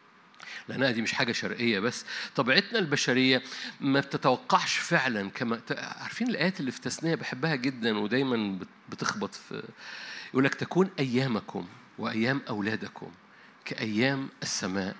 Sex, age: male, 50-69